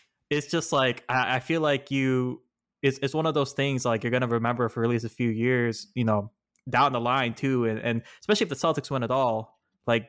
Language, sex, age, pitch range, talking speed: English, male, 20-39, 115-135 Hz, 245 wpm